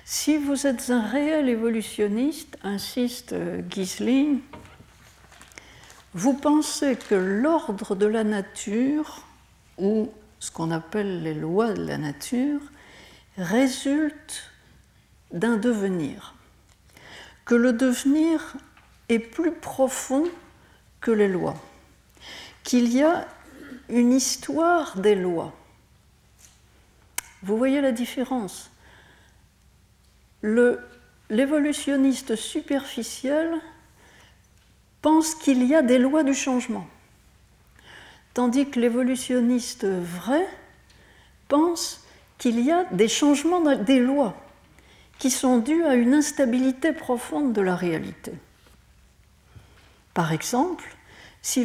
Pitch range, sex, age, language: 215-290 Hz, female, 60-79, French